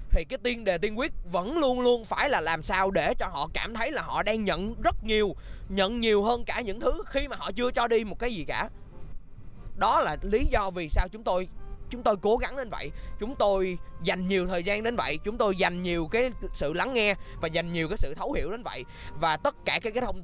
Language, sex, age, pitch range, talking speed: Vietnamese, male, 20-39, 185-245 Hz, 250 wpm